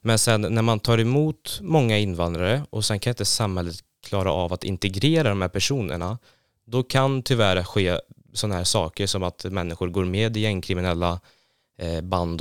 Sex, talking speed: male, 170 wpm